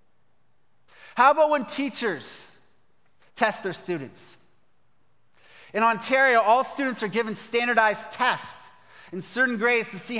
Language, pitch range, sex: English, 175-245 Hz, male